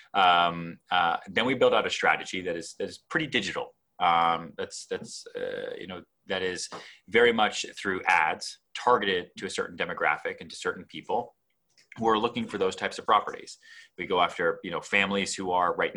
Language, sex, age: English, male, 30-49